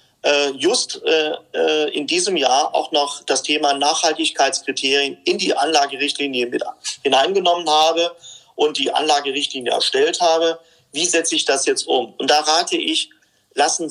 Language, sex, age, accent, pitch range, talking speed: German, male, 40-59, German, 135-205 Hz, 135 wpm